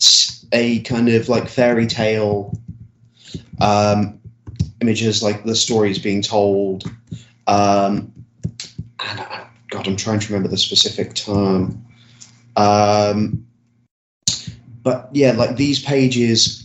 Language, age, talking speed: English, 20-39, 105 wpm